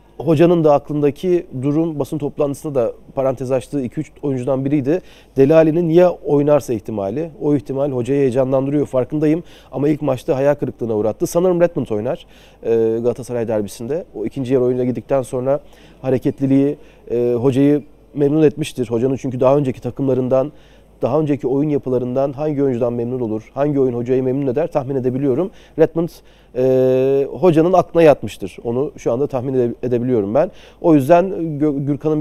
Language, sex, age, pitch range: Turkish, male, 40-59, 125-145 Hz